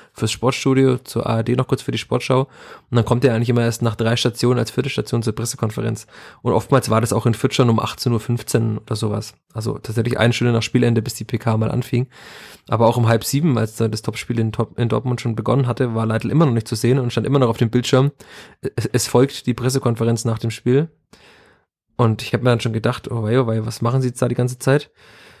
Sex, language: male, German